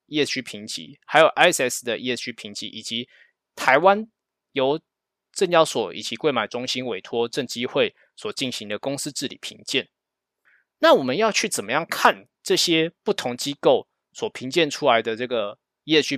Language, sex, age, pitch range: Chinese, male, 20-39, 125-200 Hz